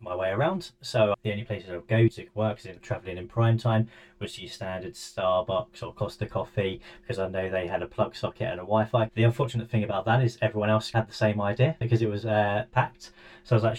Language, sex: English, male